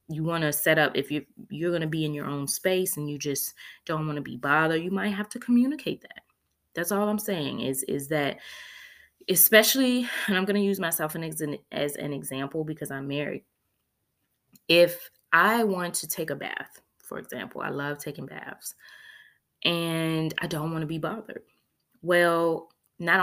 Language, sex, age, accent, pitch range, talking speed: English, female, 20-39, American, 145-195 Hz, 185 wpm